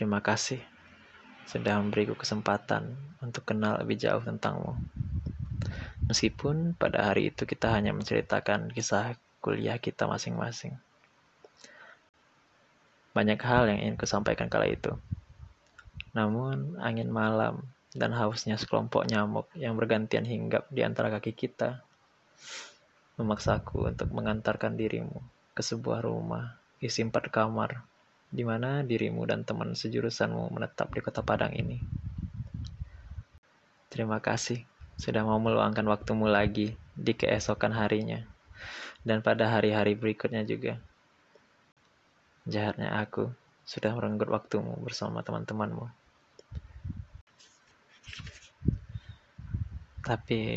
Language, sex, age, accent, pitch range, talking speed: Indonesian, male, 20-39, native, 105-115 Hz, 100 wpm